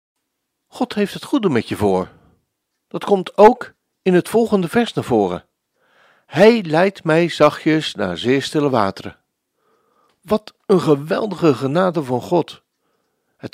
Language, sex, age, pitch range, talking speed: Dutch, male, 60-79, 140-185 Hz, 135 wpm